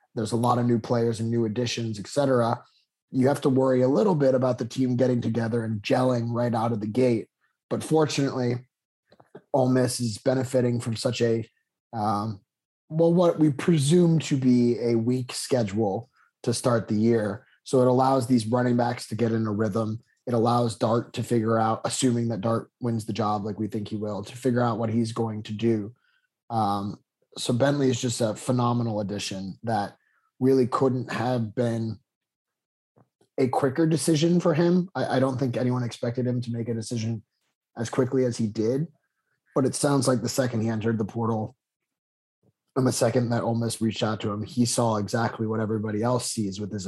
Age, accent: 30-49, American